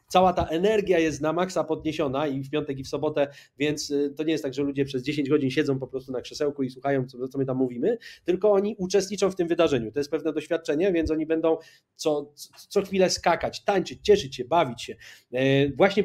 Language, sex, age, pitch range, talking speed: Polish, male, 30-49, 150-185 Hz, 215 wpm